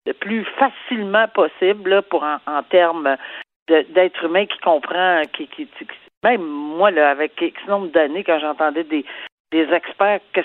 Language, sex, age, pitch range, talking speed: French, female, 50-69, 165-235 Hz, 165 wpm